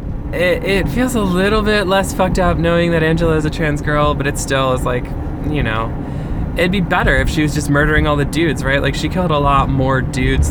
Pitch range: 130-160 Hz